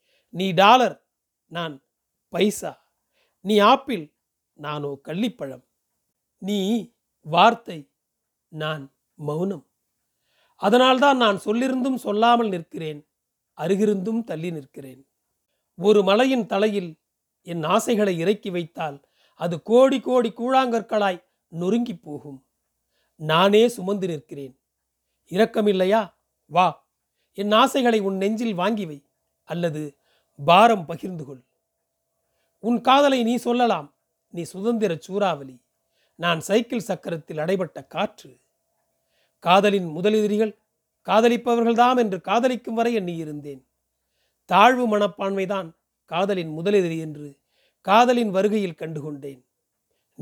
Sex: male